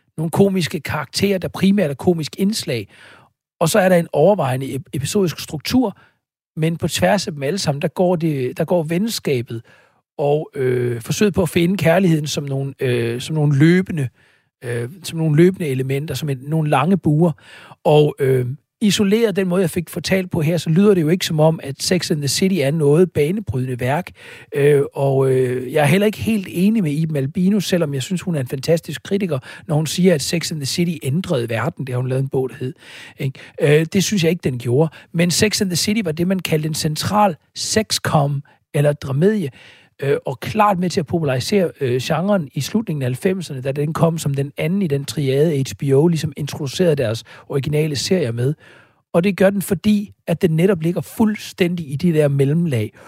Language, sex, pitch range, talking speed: Danish, male, 140-180 Hz, 200 wpm